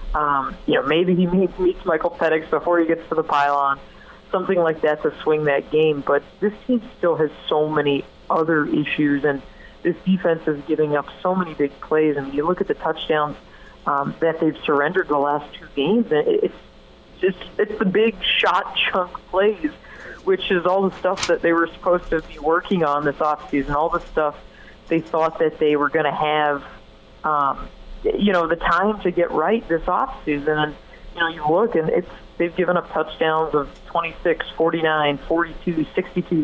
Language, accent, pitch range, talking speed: English, American, 155-185 Hz, 190 wpm